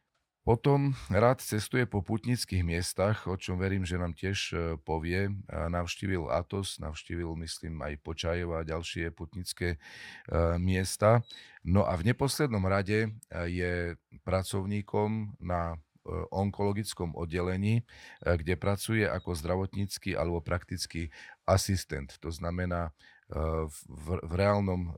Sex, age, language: male, 40-59, Slovak